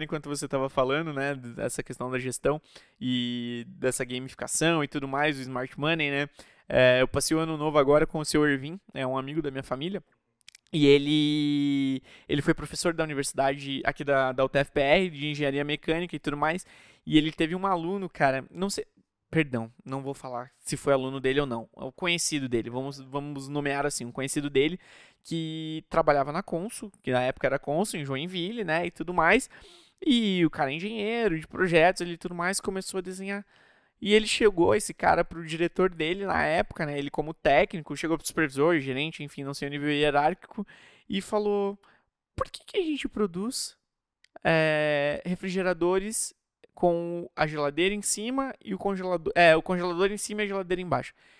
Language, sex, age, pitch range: Portuguese, male, 20-39, 140-185 Hz